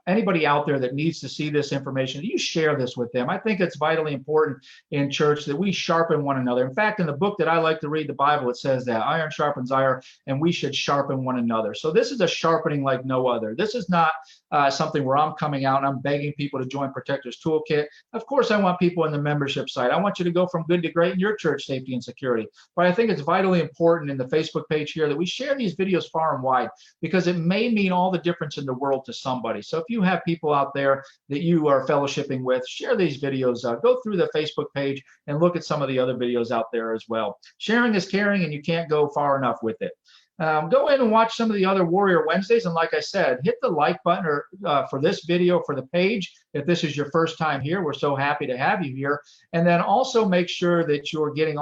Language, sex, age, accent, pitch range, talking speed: English, male, 50-69, American, 135-175 Hz, 260 wpm